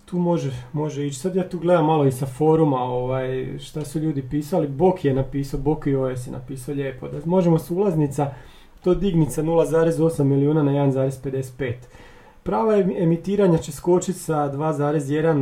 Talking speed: 160 wpm